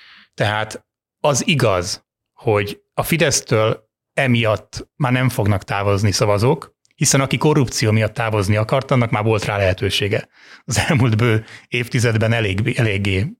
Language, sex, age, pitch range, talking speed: Hungarian, male, 30-49, 100-125 Hz, 125 wpm